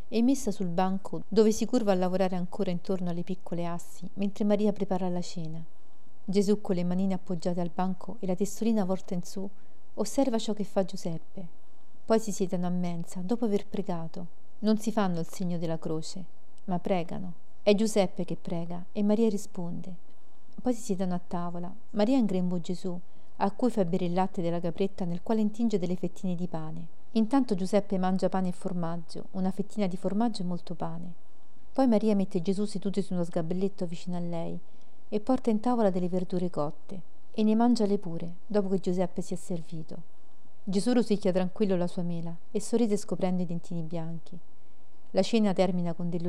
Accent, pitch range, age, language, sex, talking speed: native, 175-205 Hz, 40-59, Italian, female, 190 wpm